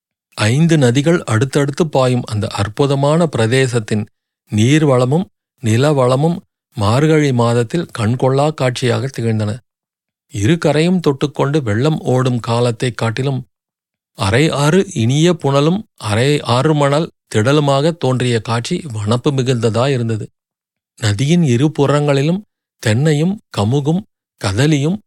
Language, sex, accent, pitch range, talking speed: Tamil, male, native, 115-150 Hz, 95 wpm